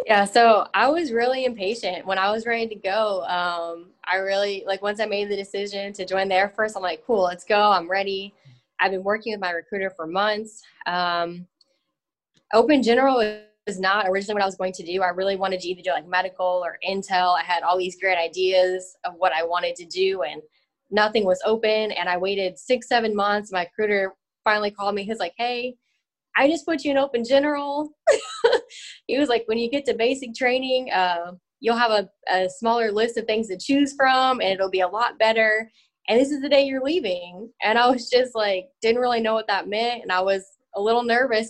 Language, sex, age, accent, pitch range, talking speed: English, female, 10-29, American, 185-240 Hz, 215 wpm